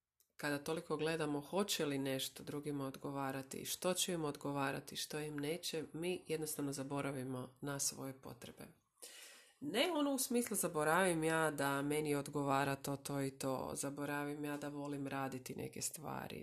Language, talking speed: Croatian, 150 wpm